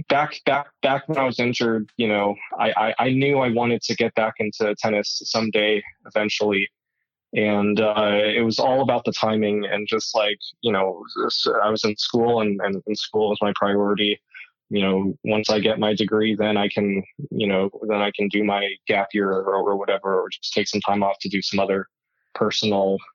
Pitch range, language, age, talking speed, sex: 100-115 Hz, English, 20-39, 205 wpm, male